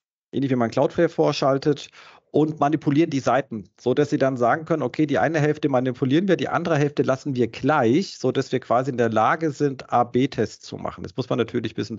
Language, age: German, 40-59